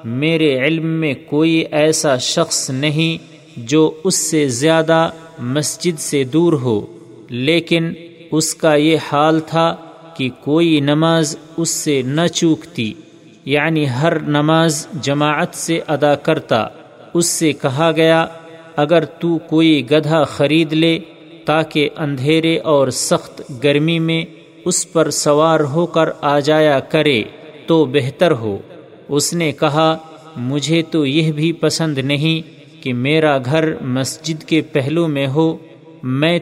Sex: male